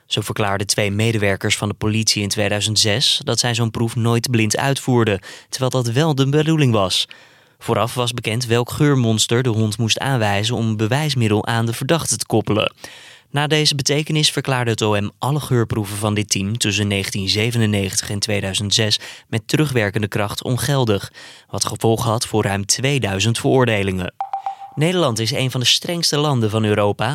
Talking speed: 165 wpm